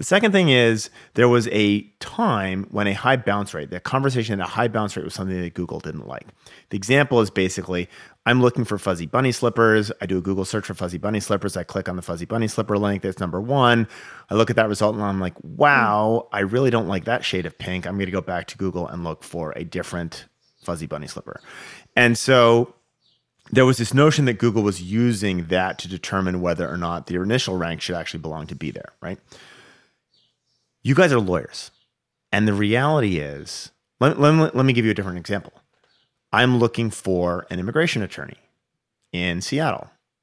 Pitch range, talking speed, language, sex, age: 90-120 Hz, 205 wpm, English, male, 30-49